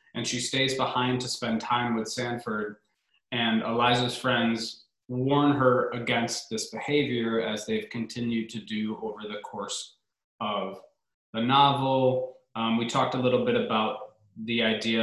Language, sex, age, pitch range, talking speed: English, male, 20-39, 110-135 Hz, 150 wpm